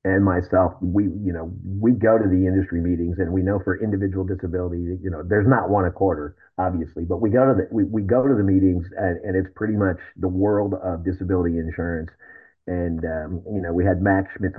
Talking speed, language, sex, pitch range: 220 wpm, English, male, 85-95 Hz